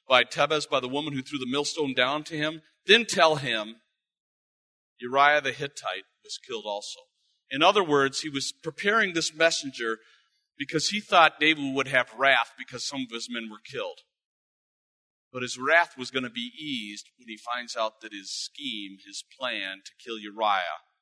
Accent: American